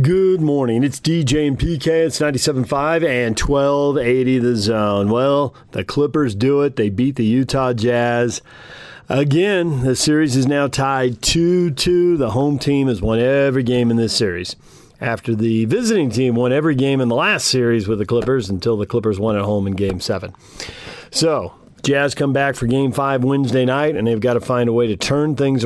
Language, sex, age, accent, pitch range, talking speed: English, male, 40-59, American, 115-140 Hz, 190 wpm